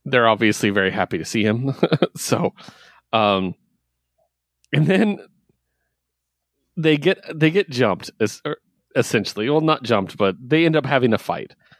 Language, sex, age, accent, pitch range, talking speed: English, male, 30-49, American, 95-150 Hz, 145 wpm